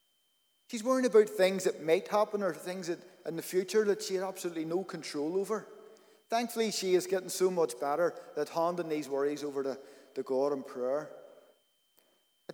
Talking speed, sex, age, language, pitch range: 185 wpm, male, 30-49, English, 150-200 Hz